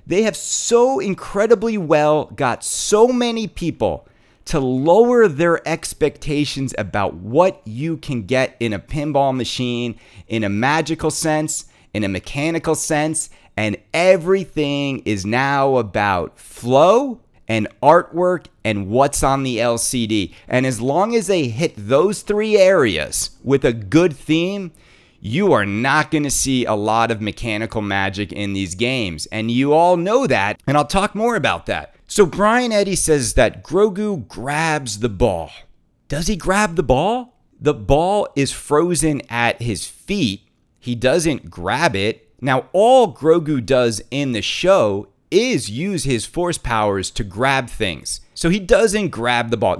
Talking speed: 155 wpm